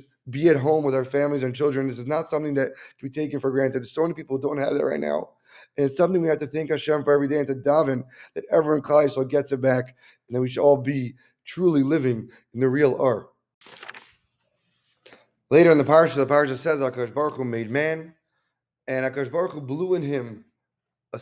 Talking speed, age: 210 wpm, 20-39